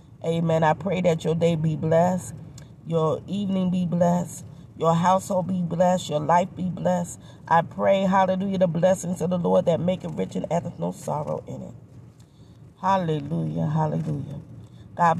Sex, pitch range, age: female, 140-180 Hz, 40-59